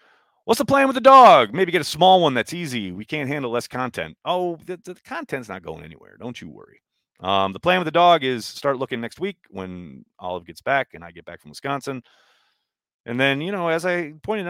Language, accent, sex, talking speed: English, American, male, 230 wpm